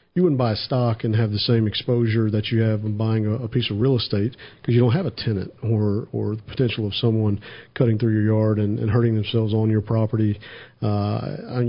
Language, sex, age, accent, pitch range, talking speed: English, male, 50-69, American, 110-125 Hz, 230 wpm